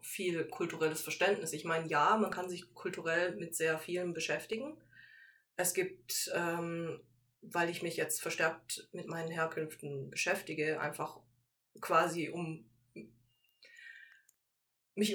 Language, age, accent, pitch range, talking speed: German, 20-39, German, 155-190 Hz, 120 wpm